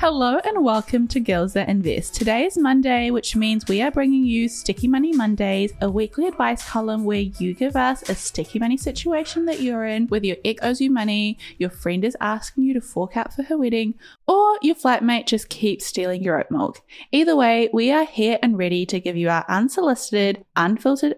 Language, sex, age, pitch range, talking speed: English, female, 10-29, 200-270 Hz, 205 wpm